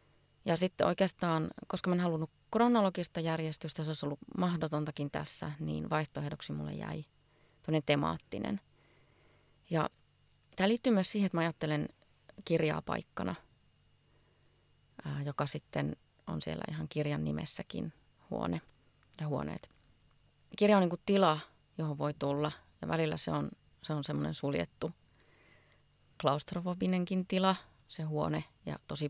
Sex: female